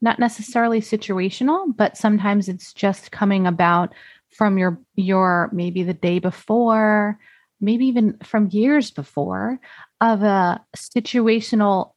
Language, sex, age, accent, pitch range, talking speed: English, female, 30-49, American, 185-230 Hz, 120 wpm